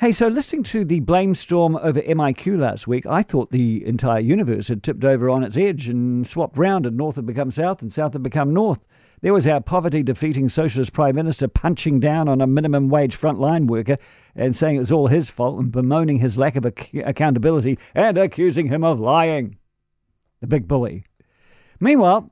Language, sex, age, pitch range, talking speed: English, male, 50-69, 135-190 Hz, 200 wpm